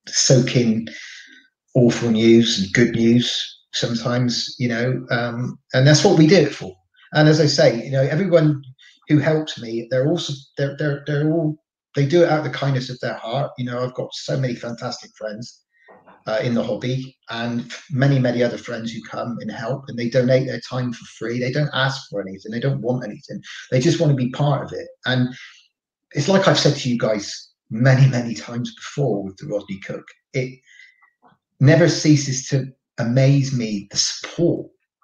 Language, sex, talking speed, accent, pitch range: English, male, 185 wpm, British, 120-150 Hz